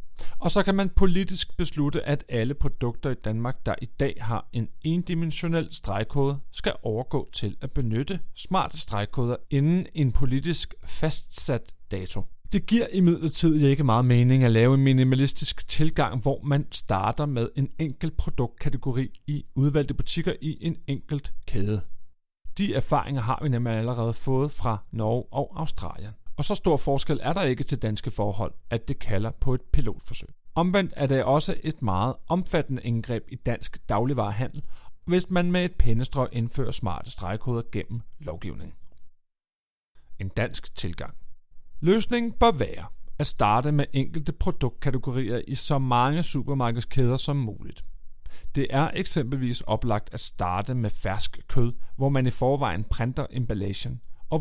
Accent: native